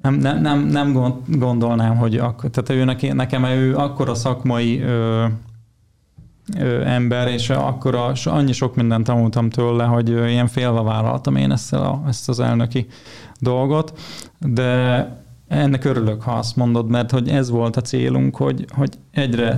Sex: male